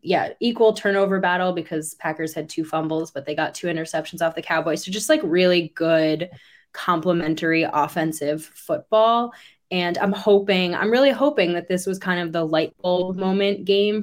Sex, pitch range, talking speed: female, 165-200 Hz, 175 wpm